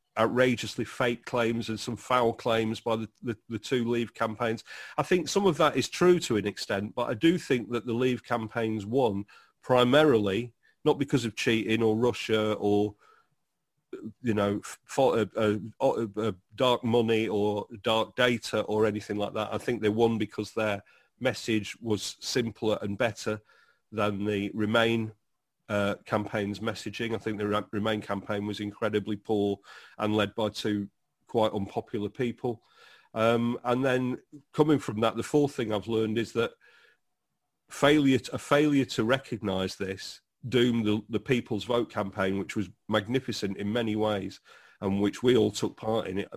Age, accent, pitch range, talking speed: 40-59, British, 105-125 Hz, 165 wpm